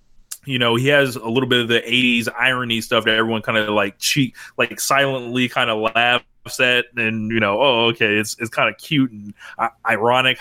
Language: English